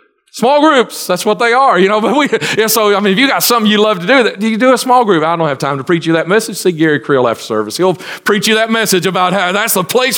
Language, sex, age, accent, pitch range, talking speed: English, male, 40-59, American, 150-225 Hz, 300 wpm